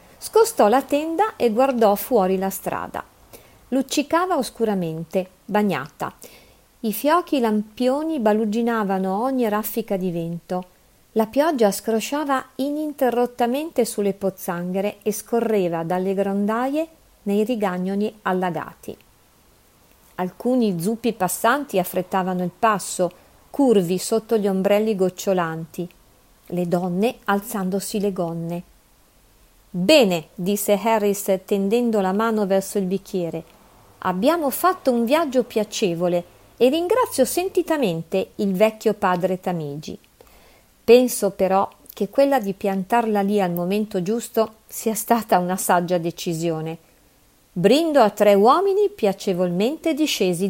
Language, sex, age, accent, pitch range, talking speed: Italian, female, 50-69, native, 185-240 Hz, 105 wpm